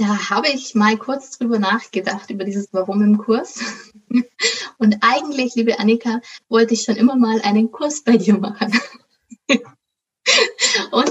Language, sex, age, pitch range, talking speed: German, female, 20-39, 205-235 Hz, 145 wpm